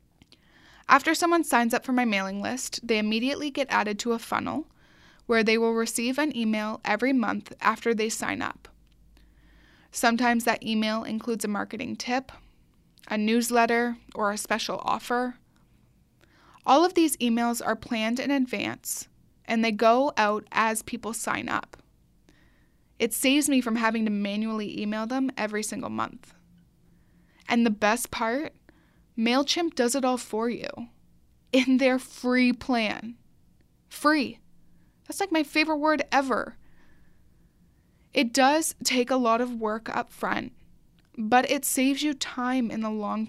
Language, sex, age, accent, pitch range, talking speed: English, female, 20-39, American, 220-265 Hz, 145 wpm